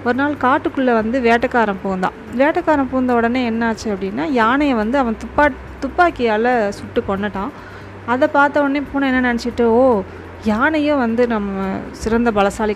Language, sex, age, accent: Tamil, female, 30-49, native